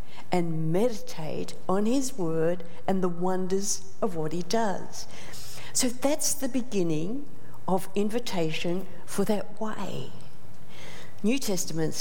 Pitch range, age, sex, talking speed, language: 160-225 Hz, 60-79, female, 115 wpm, English